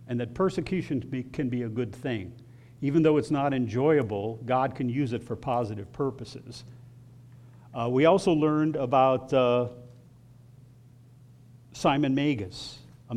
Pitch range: 120-150 Hz